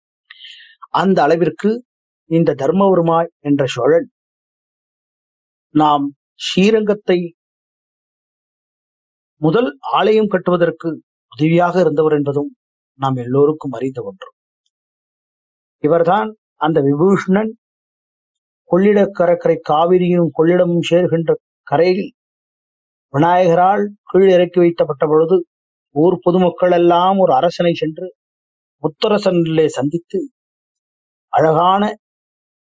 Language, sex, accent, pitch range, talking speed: English, male, Indian, 150-185 Hz, 70 wpm